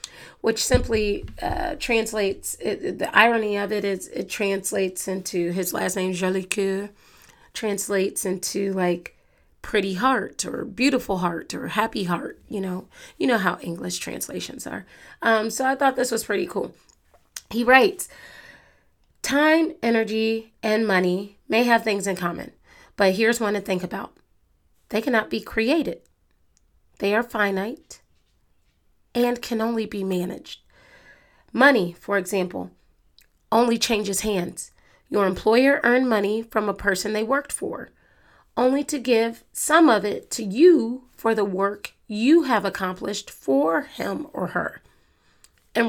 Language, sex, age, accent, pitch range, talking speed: English, female, 30-49, American, 190-240 Hz, 140 wpm